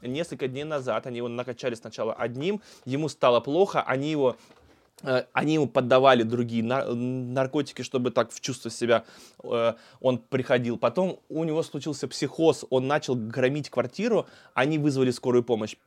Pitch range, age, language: 125-190 Hz, 20-39, Russian